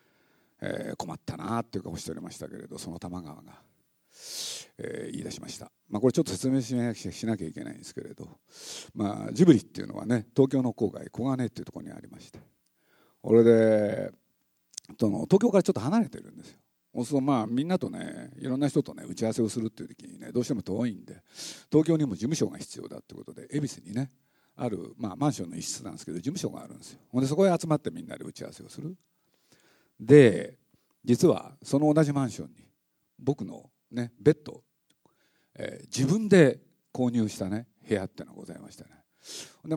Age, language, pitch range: 50-69, Japanese, 110-170 Hz